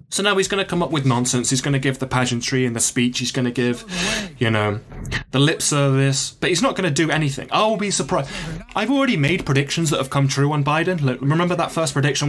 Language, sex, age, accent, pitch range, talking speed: English, male, 20-39, British, 125-165 Hz, 250 wpm